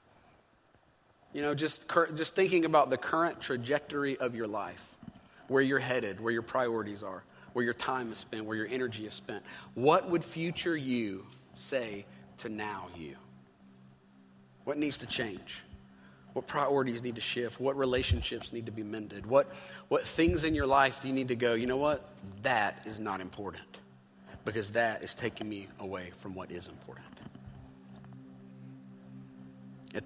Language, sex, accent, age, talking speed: English, male, American, 40-59, 160 wpm